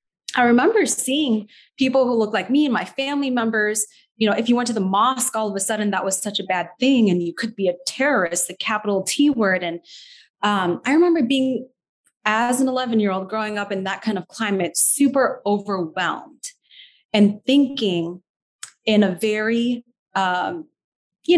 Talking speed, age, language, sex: 180 wpm, 30-49, English, female